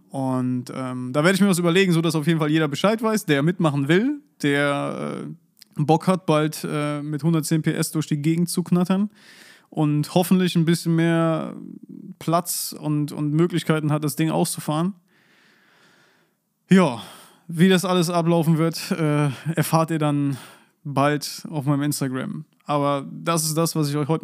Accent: German